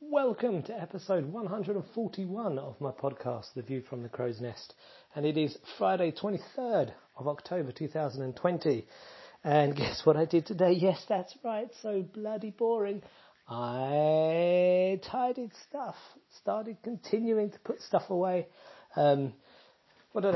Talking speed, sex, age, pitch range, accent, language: 130 wpm, male, 40-59, 130-185 Hz, British, English